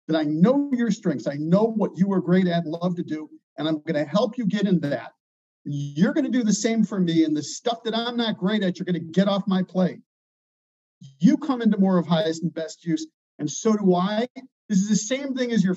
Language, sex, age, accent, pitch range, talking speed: English, male, 50-69, American, 160-200 Hz, 260 wpm